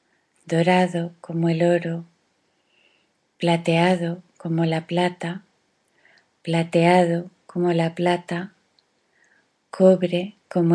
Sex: female